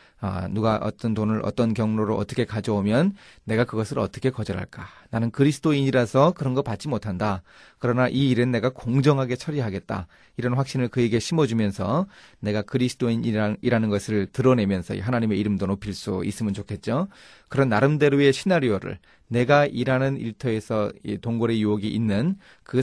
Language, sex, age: Korean, male, 30-49